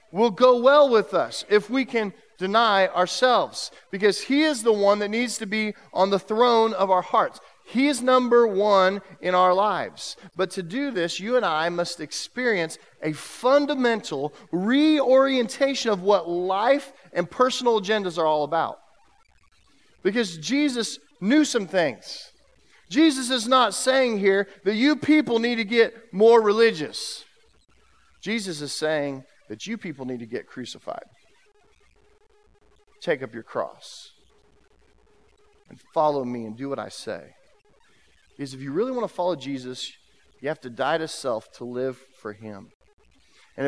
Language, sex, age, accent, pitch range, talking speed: English, male, 40-59, American, 165-250 Hz, 155 wpm